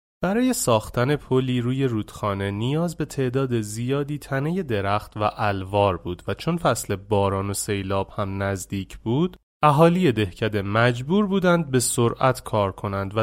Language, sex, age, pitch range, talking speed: Persian, male, 30-49, 105-160 Hz, 145 wpm